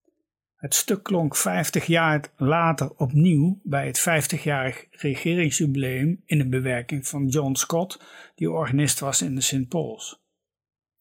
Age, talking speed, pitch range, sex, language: 50-69, 130 wpm, 140-175 Hz, male, Dutch